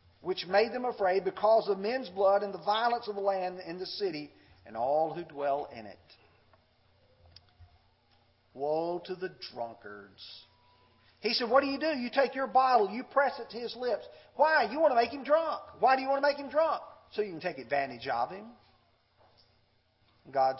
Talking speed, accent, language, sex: 190 wpm, American, English, male